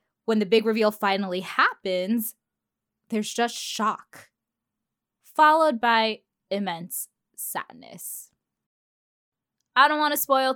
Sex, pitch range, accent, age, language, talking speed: female, 185-250 Hz, American, 10-29, English, 100 wpm